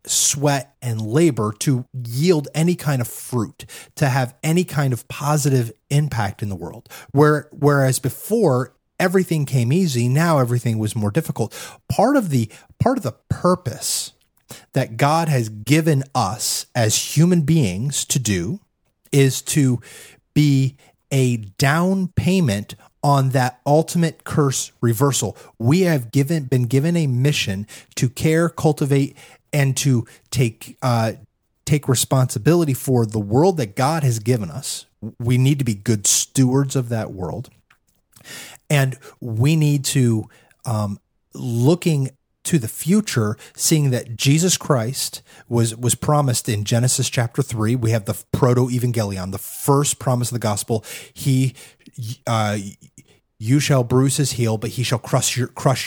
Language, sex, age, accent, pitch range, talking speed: English, male, 30-49, American, 120-145 Hz, 145 wpm